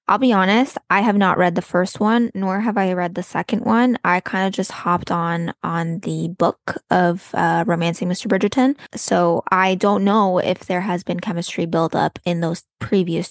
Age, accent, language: 10-29, American, English